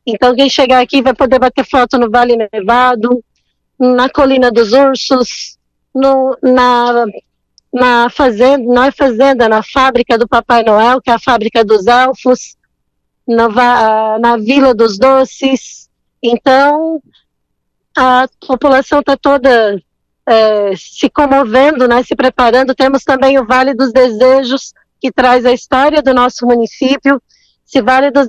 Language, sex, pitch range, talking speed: Portuguese, female, 240-270 Hz, 125 wpm